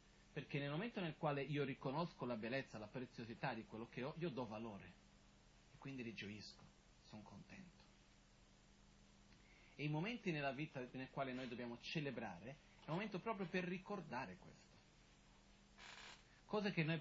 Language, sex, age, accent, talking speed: Italian, male, 40-59, native, 150 wpm